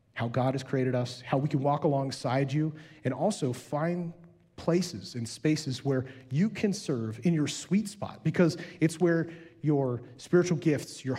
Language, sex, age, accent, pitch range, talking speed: English, male, 30-49, American, 125-165 Hz, 170 wpm